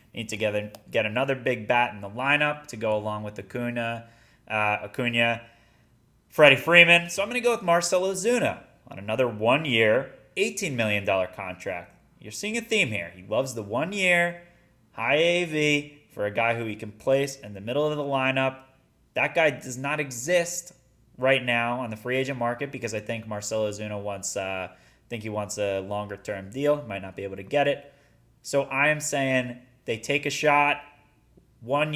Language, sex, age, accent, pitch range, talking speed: English, male, 20-39, American, 115-145 Hz, 180 wpm